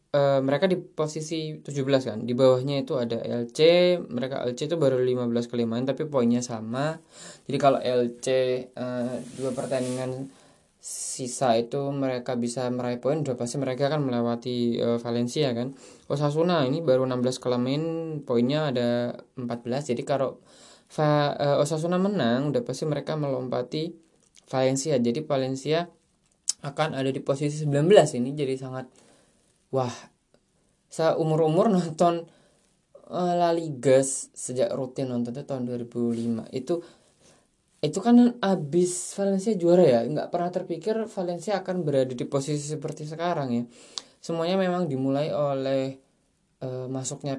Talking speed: 130 wpm